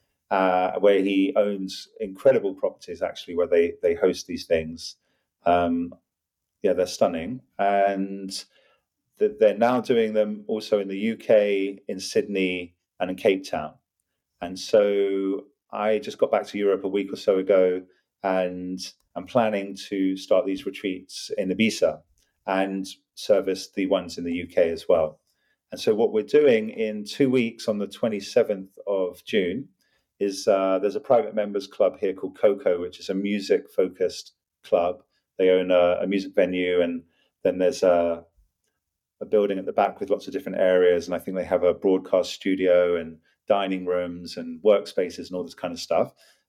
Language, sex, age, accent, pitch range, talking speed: English, male, 40-59, British, 95-110 Hz, 170 wpm